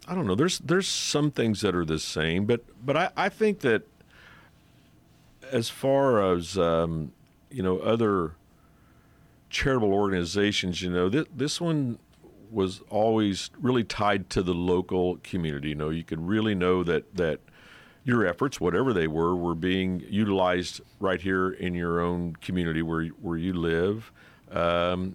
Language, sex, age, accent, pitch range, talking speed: English, male, 50-69, American, 85-105 Hz, 155 wpm